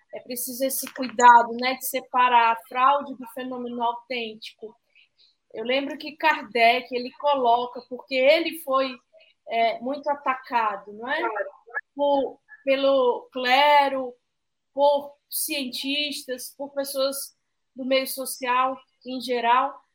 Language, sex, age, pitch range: Portuguese, female, 20-39, 255-310 Hz